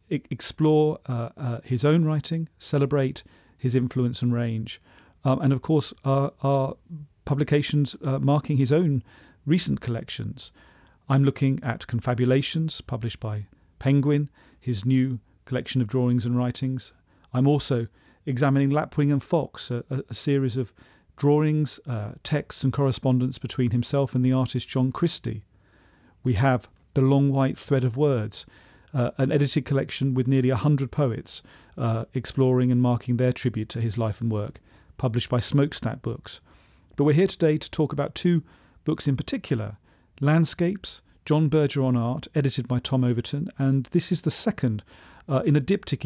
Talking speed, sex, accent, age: 160 wpm, male, British, 40-59